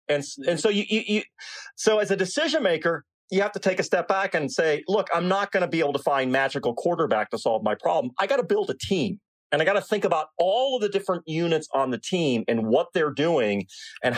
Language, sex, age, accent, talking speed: English, male, 40-59, American, 255 wpm